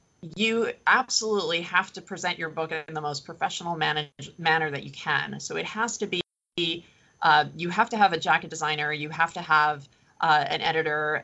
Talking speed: 185 wpm